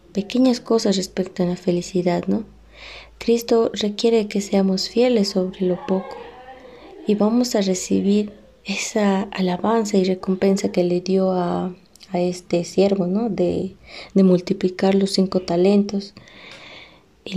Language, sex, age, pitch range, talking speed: Spanish, female, 20-39, 185-215 Hz, 130 wpm